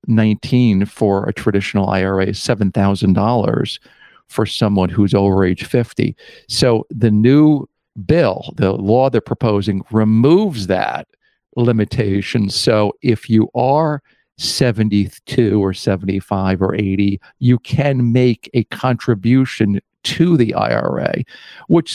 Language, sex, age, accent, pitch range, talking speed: English, male, 50-69, American, 100-125 Hz, 110 wpm